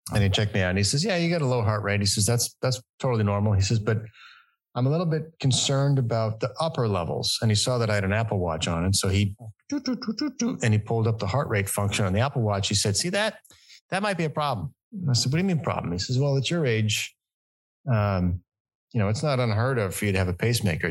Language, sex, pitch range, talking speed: English, male, 100-140 Hz, 280 wpm